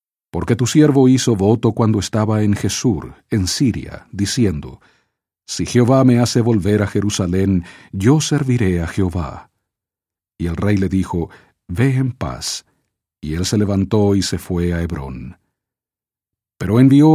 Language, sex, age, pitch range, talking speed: English, male, 50-69, 95-120 Hz, 145 wpm